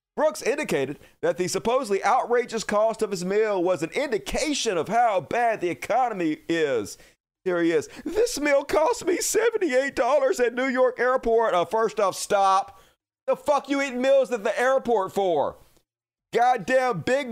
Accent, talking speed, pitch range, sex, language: American, 165 wpm, 210-275 Hz, male, English